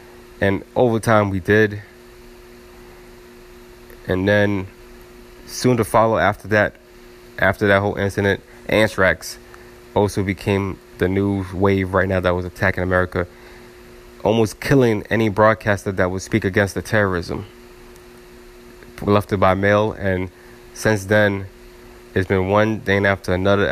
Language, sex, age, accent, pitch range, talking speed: English, male, 20-39, American, 95-120 Hz, 130 wpm